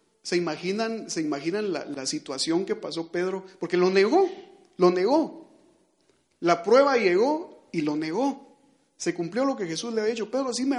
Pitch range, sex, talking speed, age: 155-220 Hz, male, 180 wpm, 40-59